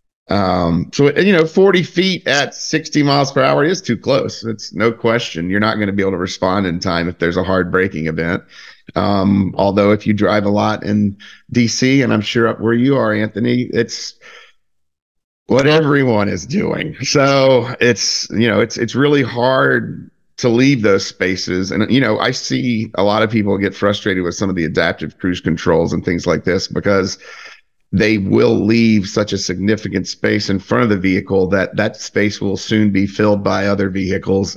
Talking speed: 195 wpm